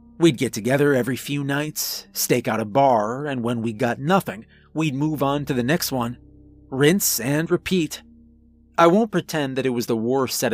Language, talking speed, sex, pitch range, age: English, 195 wpm, male, 125-165 Hz, 40-59